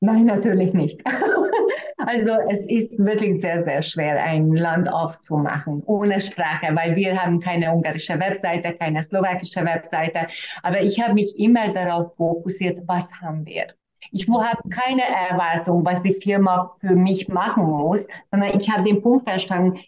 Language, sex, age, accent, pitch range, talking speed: German, female, 30-49, Austrian, 180-220 Hz, 155 wpm